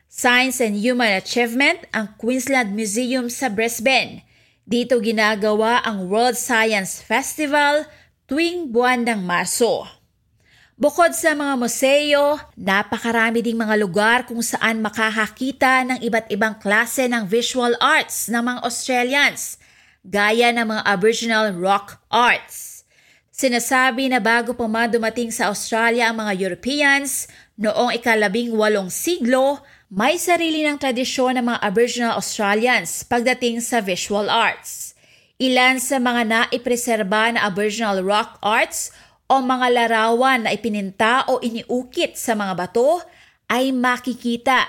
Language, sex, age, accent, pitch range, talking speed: Filipino, female, 20-39, native, 220-260 Hz, 125 wpm